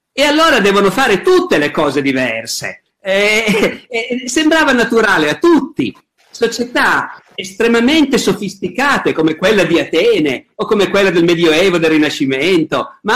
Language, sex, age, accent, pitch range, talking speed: Italian, male, 50-69, native, 165-270 Hz, 130 wpm